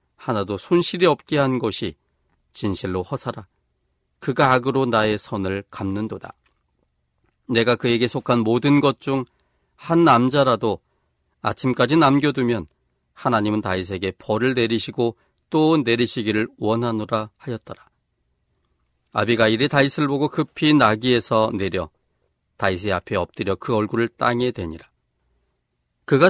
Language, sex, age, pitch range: Korean, male, 40-59, 95-130 Hz